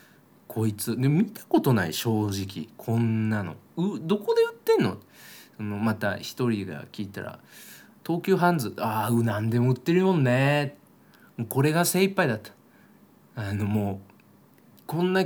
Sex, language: male, Japanese